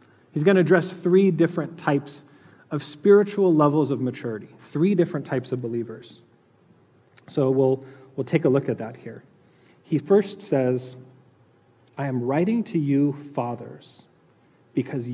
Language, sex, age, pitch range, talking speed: English, male, 30-49, 125-155 Hz, 145 wpm